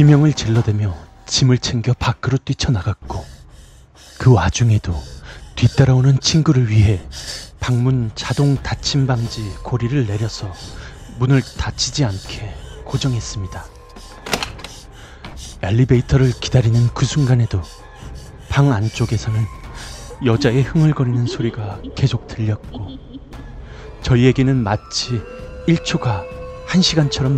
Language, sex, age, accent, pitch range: Korean, male, 30-49, native, 100-135 Hz